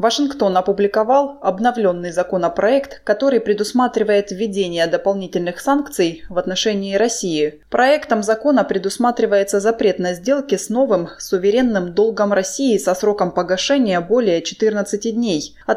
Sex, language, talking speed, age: female, Russian, 115 wpm, 20-39